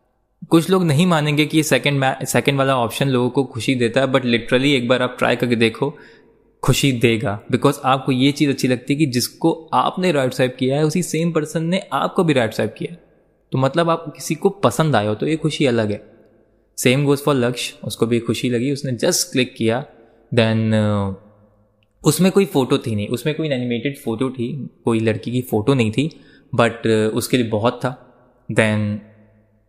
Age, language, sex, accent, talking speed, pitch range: 20-39, Hindi, male, native, 195 wpm, 115-150 Hz